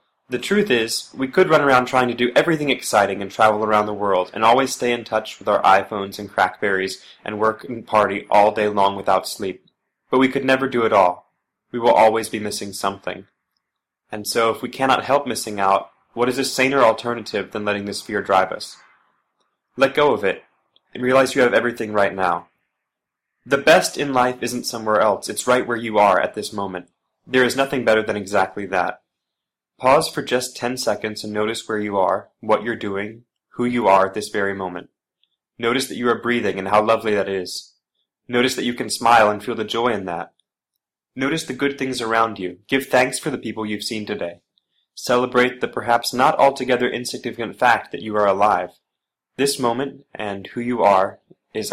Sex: male